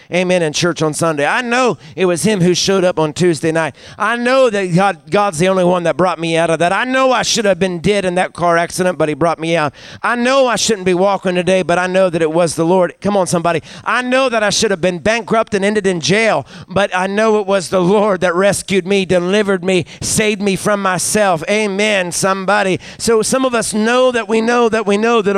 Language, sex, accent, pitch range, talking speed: English, male, American, 185-230 Hz, 250 wpm